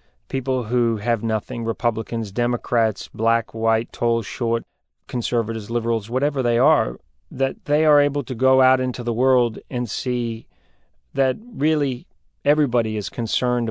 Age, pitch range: 40-59, 115-130 Hz